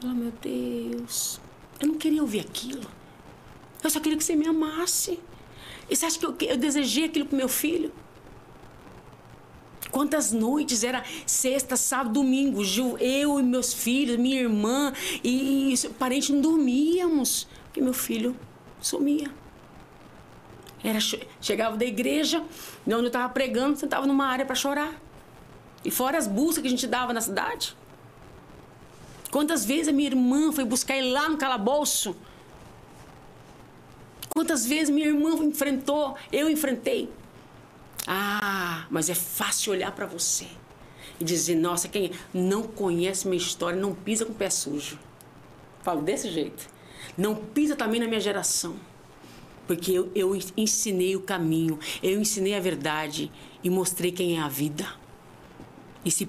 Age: 40-59